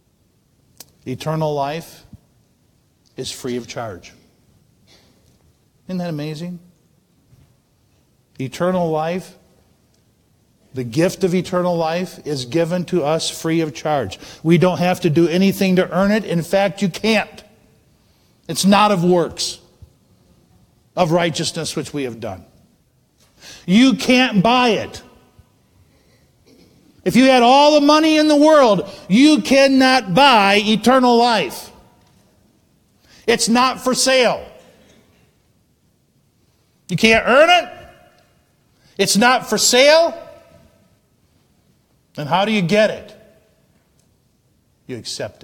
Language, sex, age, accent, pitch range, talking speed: English, male, 50-69, American, 165-230 Hz, 110 wpm